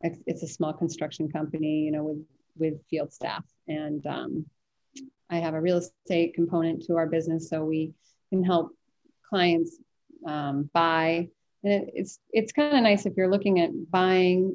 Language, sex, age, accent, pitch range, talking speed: English, female, 30-49, American, 165-195 Hz, 165 wpm